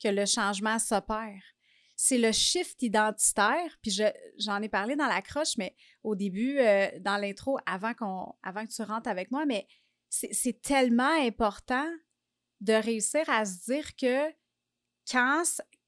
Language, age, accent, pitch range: French, 30-49, Canadian, 215-275 Hz